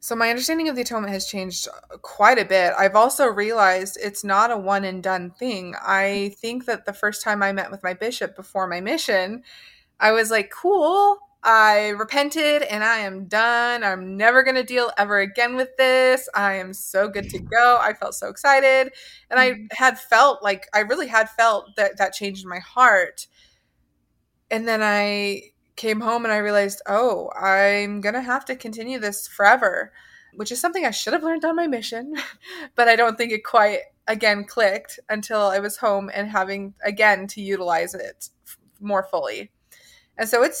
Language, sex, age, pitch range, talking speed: English, female, 20-39, 195-235 Hz, 190 wpm